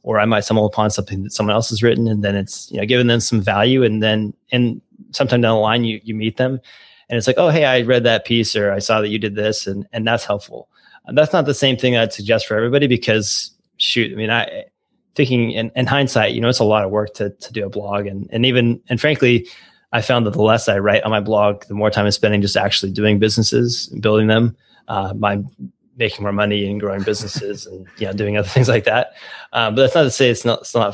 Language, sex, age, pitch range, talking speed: English, male, 20-39, 105-120 Hz, 260 wpm